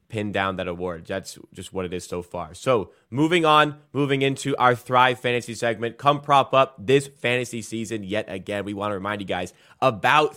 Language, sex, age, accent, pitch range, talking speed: English, male, 20-39, American, 115-140 Hz, 205 wpm